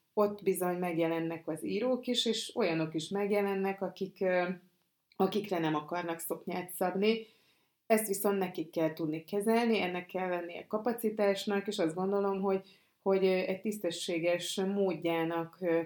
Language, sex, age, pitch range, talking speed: Hungarian, female, 30-49, 170-195 Hz, 125 wpm